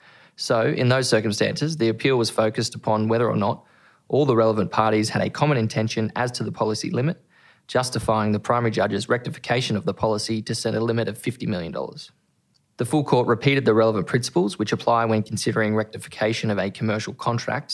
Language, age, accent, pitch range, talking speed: English, 20-39, Australian, 110-130 Hz, 190 wpm